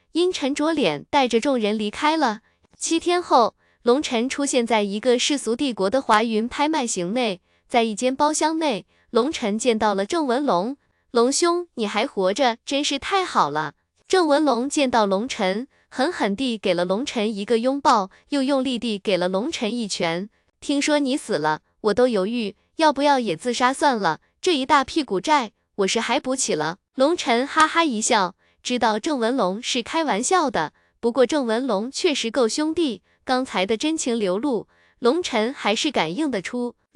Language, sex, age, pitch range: Chinese, female, 20-39, 220-290 Hz